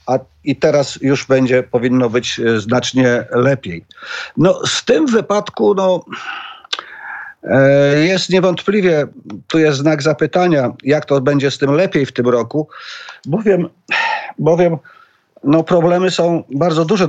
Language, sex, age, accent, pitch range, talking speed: Polish, male, 50-69, native, 125-155 Hz, 115 wpm